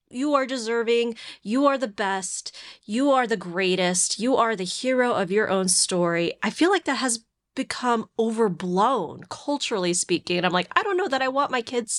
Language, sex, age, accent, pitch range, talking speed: English, female, 20-39, American, 210-295 Hz, 195 wpm